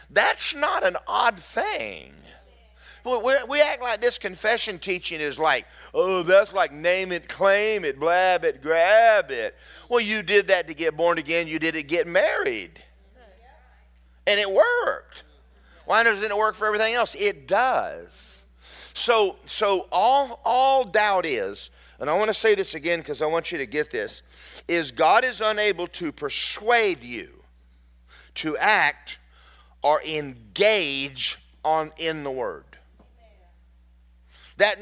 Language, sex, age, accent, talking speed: English, male, 40-59, American, 145 wpm